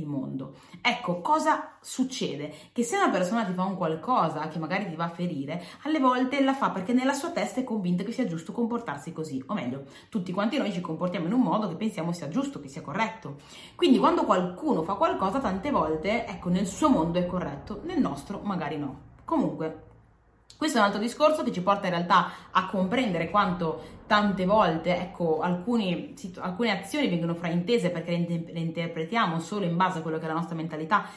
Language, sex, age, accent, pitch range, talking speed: Italian, female, 30-49, native, 170-250 Hz, 195 wpm